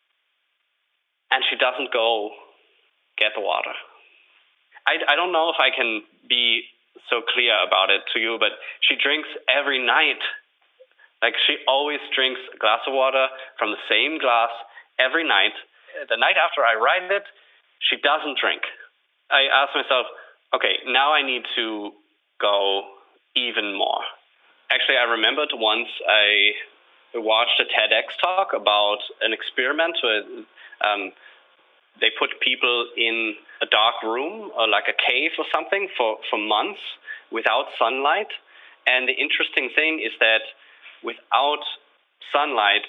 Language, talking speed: English, 140 wpm